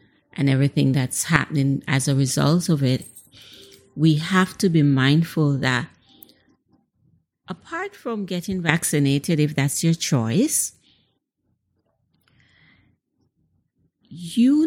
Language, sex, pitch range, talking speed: English, female, 140-170 Hz, 100 wpm